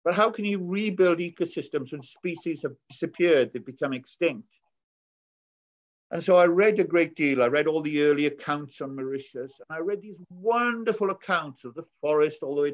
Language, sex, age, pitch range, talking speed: English, male, 50-69, 140-180 Hz, 190 wpm